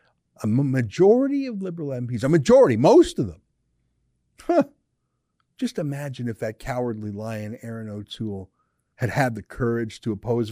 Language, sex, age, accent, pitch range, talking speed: English, male, 50-69, American, 115-175 Hz, 145 wpm